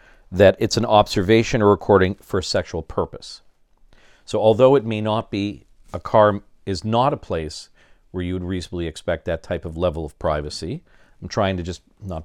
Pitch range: 85-110 Hz